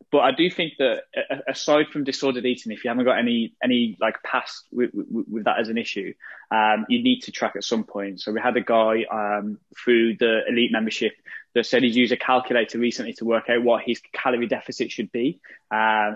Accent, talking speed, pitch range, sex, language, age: British, 220 wpm, 110-130 Hz, male, English, 10-29